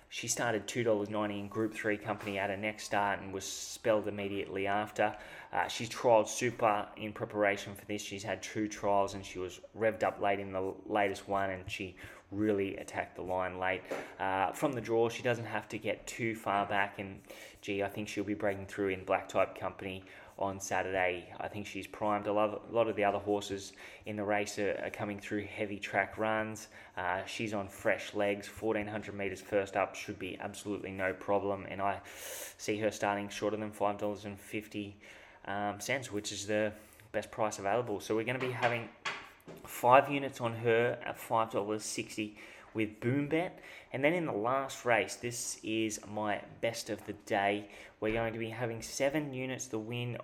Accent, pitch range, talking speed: Australian, 100-110 Hz, 195 wpm